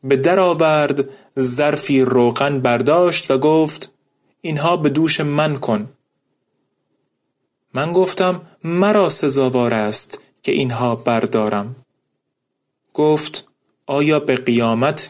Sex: male